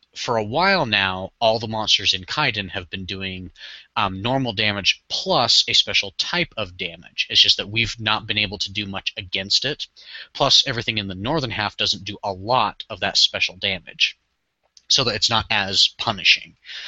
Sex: male